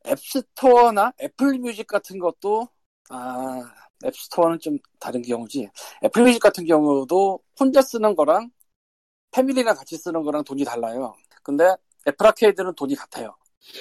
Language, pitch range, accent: Korean, 150-250 Hz, native